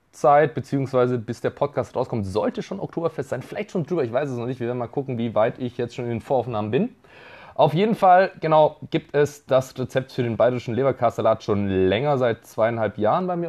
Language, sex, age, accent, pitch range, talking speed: German, male, 30-49, German, 115-150 Hz, 220 wpm